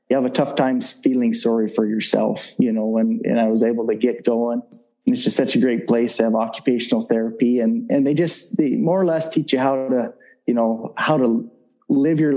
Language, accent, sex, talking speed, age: English, American, male, 235 wpm, 30-49